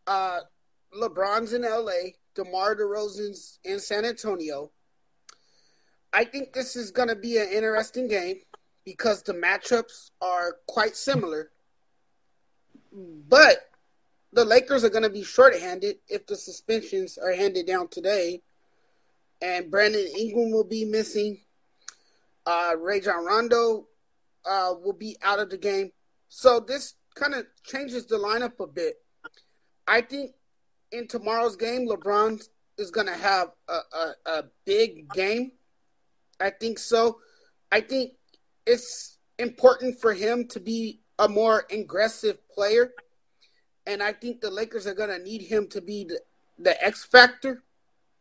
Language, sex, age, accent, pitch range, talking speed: English, male, 30-49, American, 205-255 Hz, 140 wpm